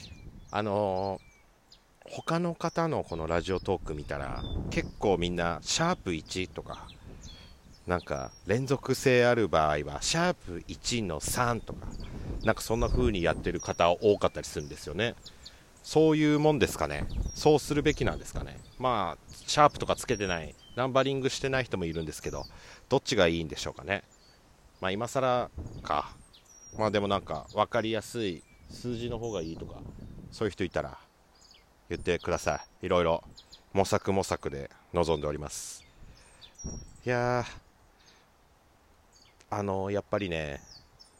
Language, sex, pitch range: Japanese, male, 80-120 Hz